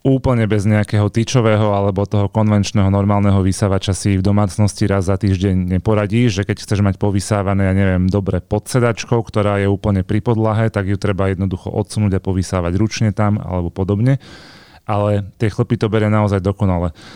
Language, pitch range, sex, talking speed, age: Slovak, 100-115 Hz, male, 170 wpm, 30-49